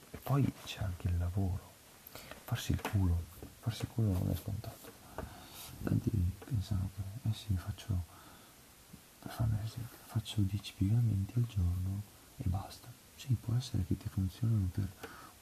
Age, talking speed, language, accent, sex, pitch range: 40-59, 140 wpm, Italian, native, male, 90-110 Hz